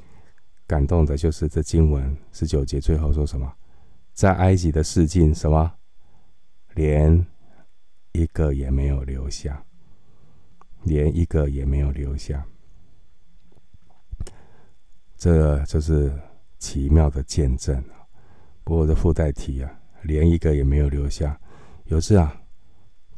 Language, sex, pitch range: Chinese, male, 75-85 Hz